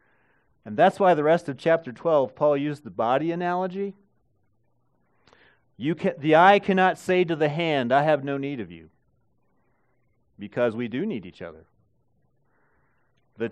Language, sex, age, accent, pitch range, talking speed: English, male, 40-59, American, 140-205 Hz, 145 wpm